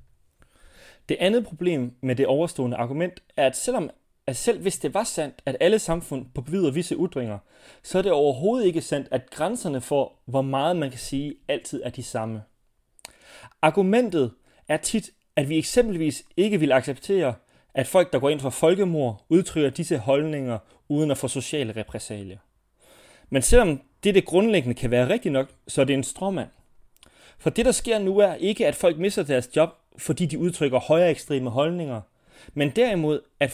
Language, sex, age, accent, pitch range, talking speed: Danish, male, 30-49, native, 130-175 Hz, 175 wpm